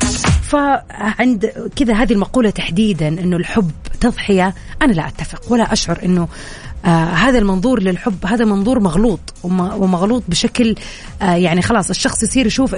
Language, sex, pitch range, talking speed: Arabic, female, 185-240 Hz, 125 wpm